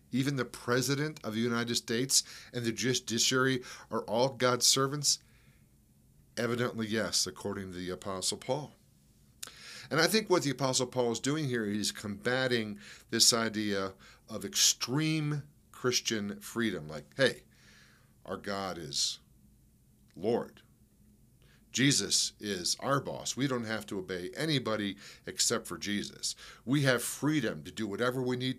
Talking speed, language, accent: 140 wpm, English, American